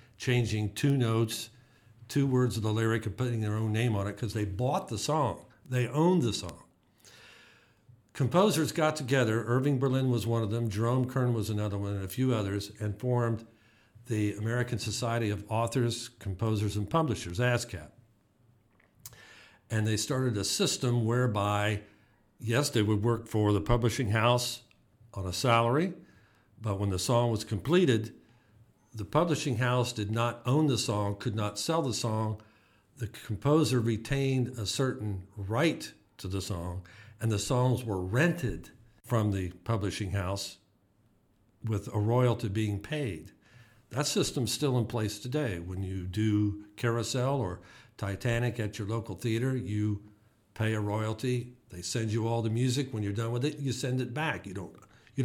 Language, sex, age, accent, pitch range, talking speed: English, male, 60-79, American, 105-125 Hz, 165 wpm